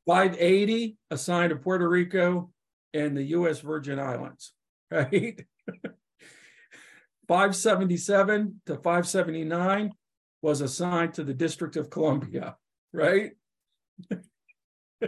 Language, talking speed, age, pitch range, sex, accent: English, 90 wpm, 50-69, 150-185 Hz, male, American